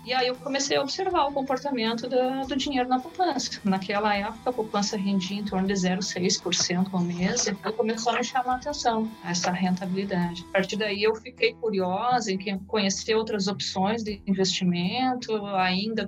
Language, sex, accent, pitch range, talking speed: Portuguese, female, Brazilian, 190-245 Hz, 170 wpm